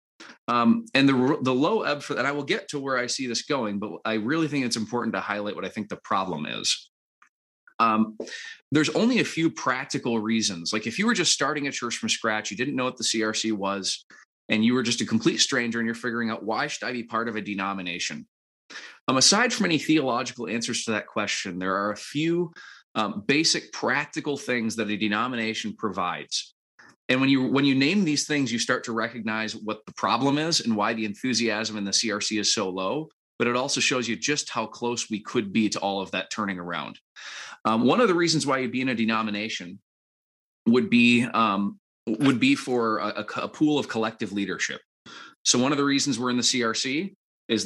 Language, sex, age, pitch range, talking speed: English, male, 30-49, 110-135 Hz, 215 wpm